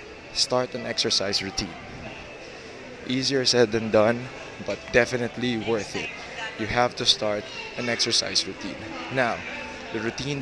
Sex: male